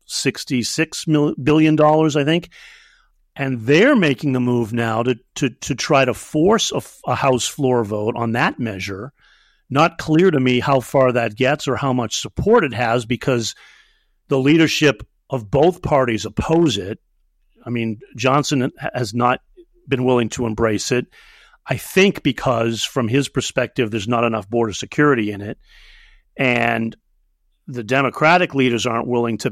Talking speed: 150 wpm